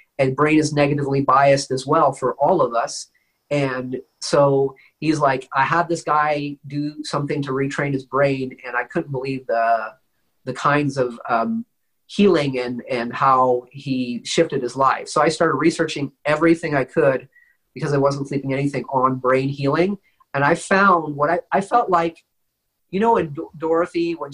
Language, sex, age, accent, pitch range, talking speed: English, male, 40-59, American, 130-160 Hz, 175 wpm